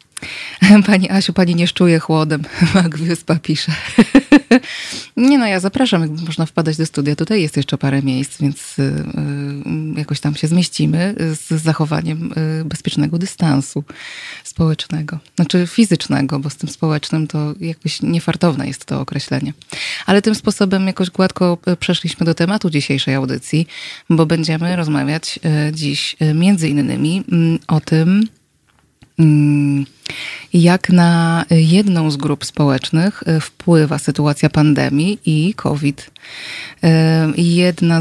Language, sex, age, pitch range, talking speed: Polish, female, 20-39, 150-175 Hz, 120 wpm